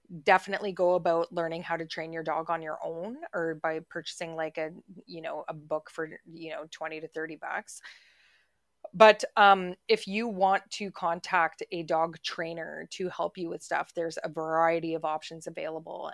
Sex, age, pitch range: female, 20-39, 165-195 Hz